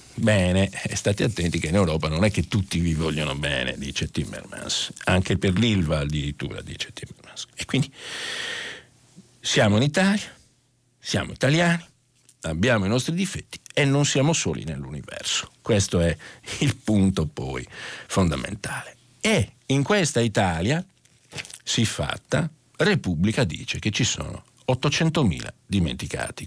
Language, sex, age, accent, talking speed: Italian, male, 50-69, native, 125 wpm